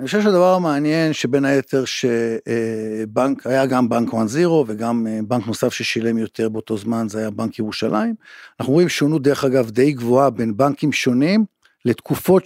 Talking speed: 160 wpm